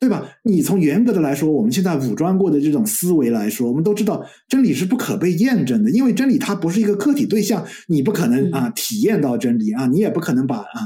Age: 50-69